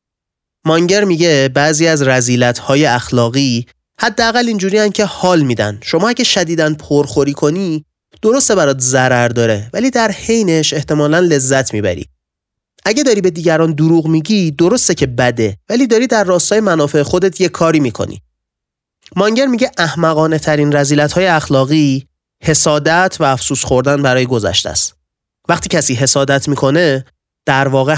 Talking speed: 140 wpm